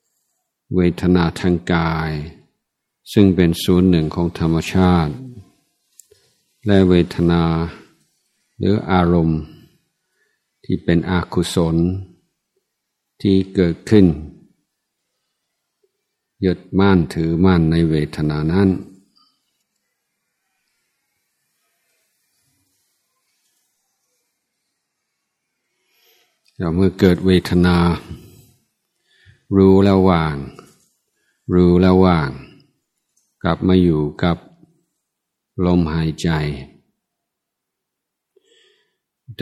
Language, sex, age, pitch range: Thai, male, 60-79, 85-95 Hz